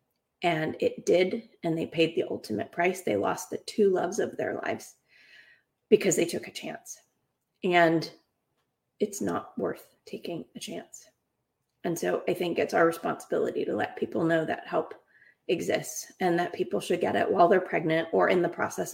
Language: English